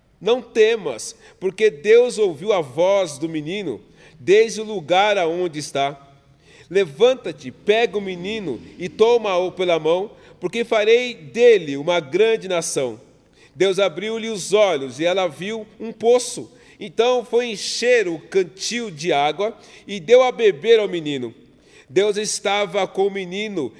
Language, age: Portuguese, 40-59